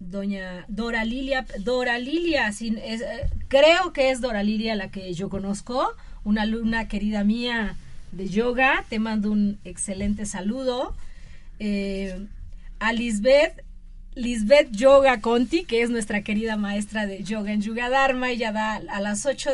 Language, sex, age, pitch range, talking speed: Spanish, female, 30-49, 205-250 Hz, 145 wpm